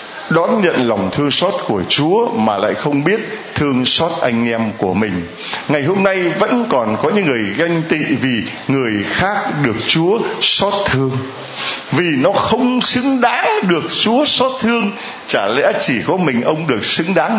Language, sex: Vietnamese, male